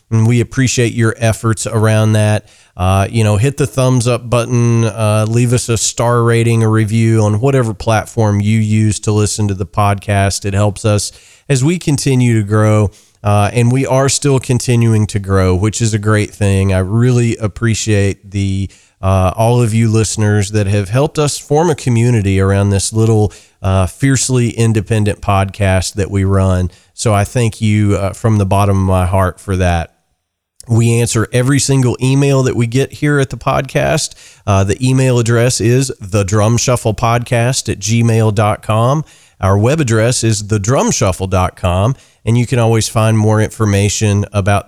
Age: 40-59